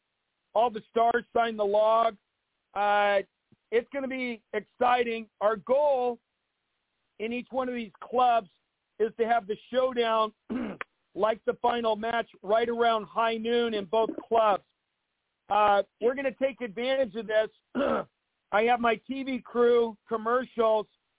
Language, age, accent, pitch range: English, 50-69, American, 220-245 Hz